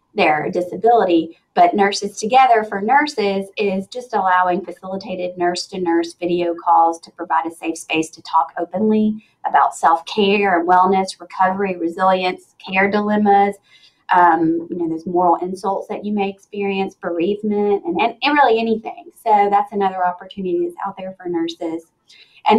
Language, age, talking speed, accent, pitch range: English, 30-49, 145 wpm, American, 170-200 Hz